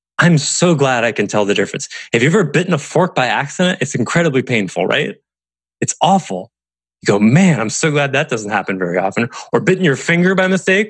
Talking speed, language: 215 wpm, English